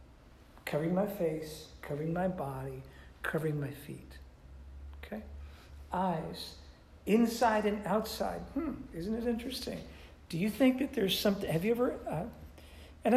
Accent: American